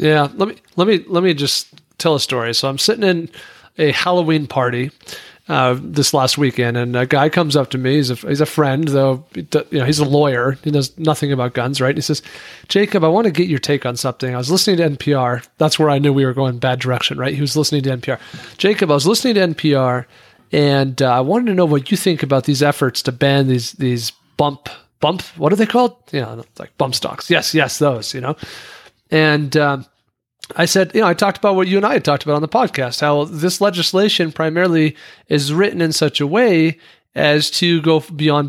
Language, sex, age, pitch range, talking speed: English, male, 40-59, 140-170 Hz, 235 wpm